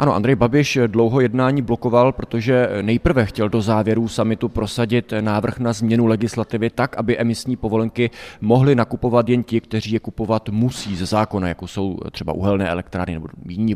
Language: Czech